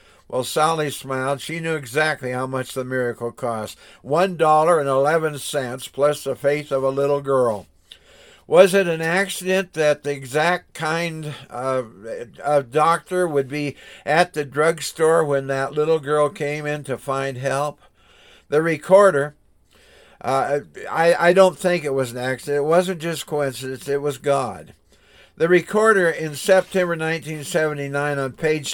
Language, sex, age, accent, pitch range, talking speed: English, male, 60-79, American, 135-165 Hz, 150 wpm